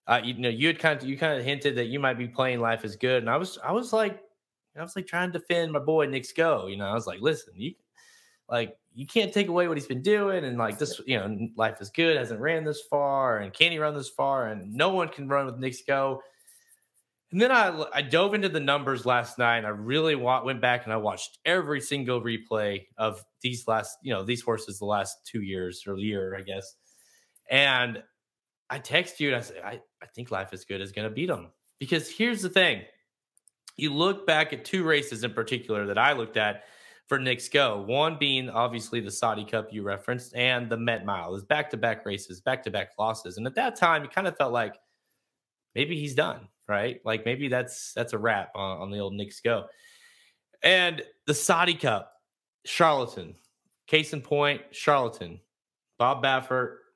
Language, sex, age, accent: English, male, 20-39, American